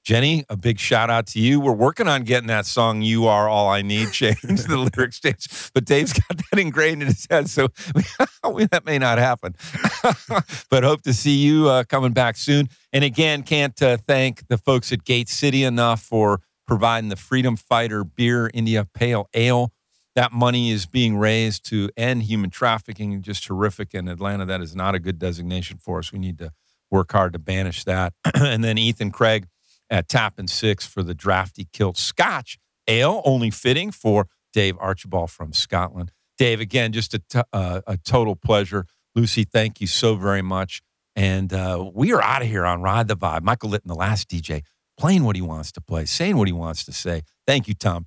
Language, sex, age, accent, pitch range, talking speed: English, male, 50-69, American, 95-125 Hz, 200 wpm